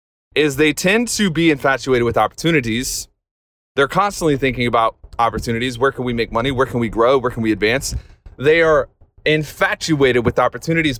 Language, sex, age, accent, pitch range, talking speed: English, male, 30-49, American, 115-150 Hz, 170 wpm